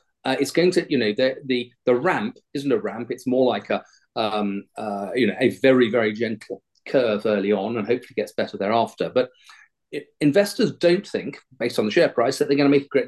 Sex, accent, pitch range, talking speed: male, British, 130-190 Hz, 230 wpm